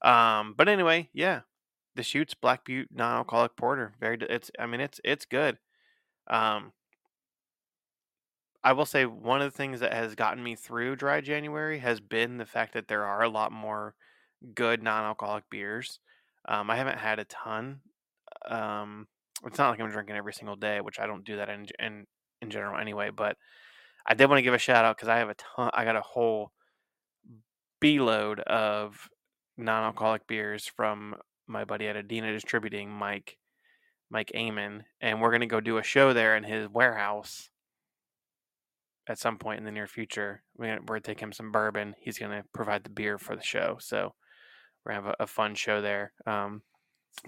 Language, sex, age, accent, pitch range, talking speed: English, male, 20-39, American, 105-120 Hz, 185 wpm